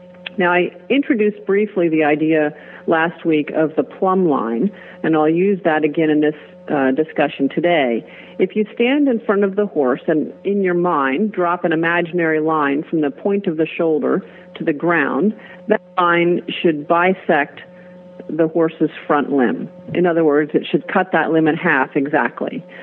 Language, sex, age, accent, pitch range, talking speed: English, female, 50-69, American, 155-180 Hz, 175 wpm